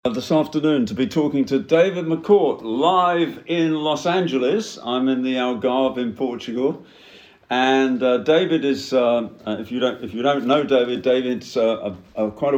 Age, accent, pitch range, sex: 50-69, British, 105-130 Hz, male